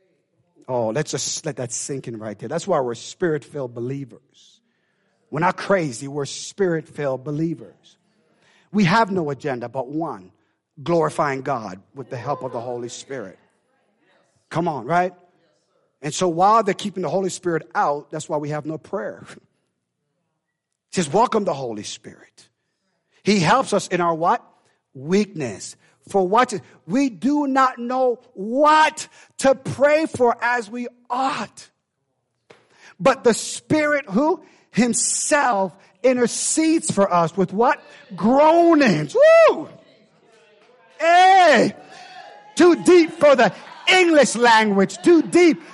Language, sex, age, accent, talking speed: English, male, 50-69, American, 130 wpm